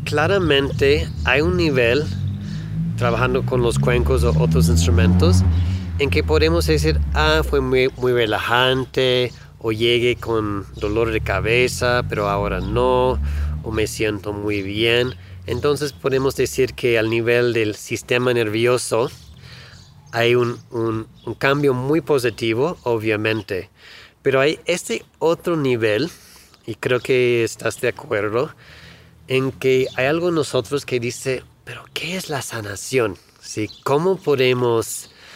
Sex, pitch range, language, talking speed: male, 105-130 Hz, Spanish, 130 wpm